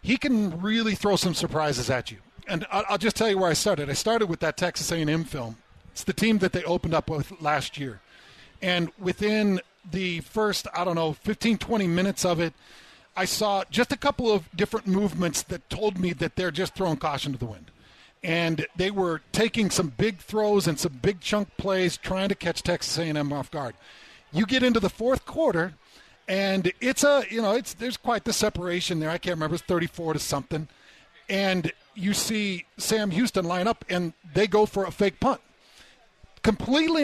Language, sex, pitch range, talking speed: English, male, 160-210 Hz, 200 wpm